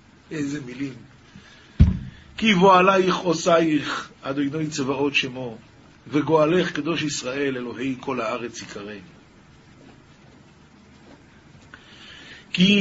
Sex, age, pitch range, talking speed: male, 50-69, 125-175 Hz, 75 wpm